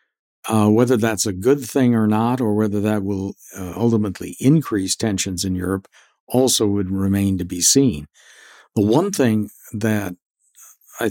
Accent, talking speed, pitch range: American, 155 wpm, 100-120 Hz